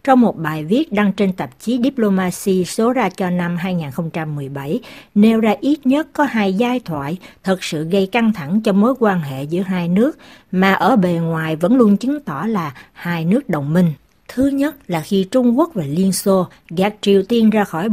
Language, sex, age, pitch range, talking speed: Vietnamese, female, 60-79, 170-235 Hz, 205 wpm